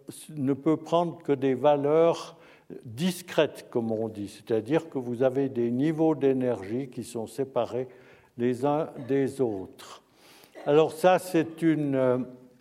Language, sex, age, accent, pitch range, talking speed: French, male, 60-79, French, 125-155 Hz, 135 wpm